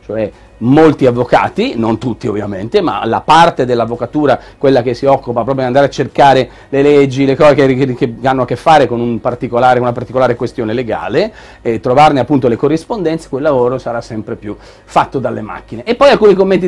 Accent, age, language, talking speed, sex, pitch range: native, 40-59, Italian, 190 wpm, male, 120-165 Hz